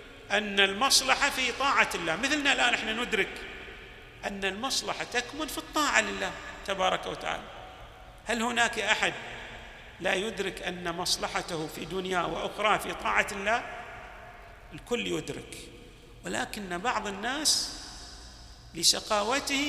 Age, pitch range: 40-59, 175-235 Hz